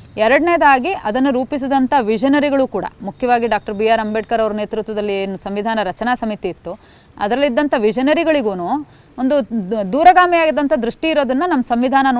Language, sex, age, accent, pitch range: English, female, 30-49, Indian, 220-290 Hz